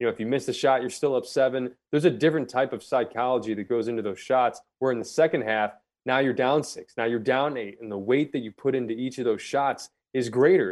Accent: American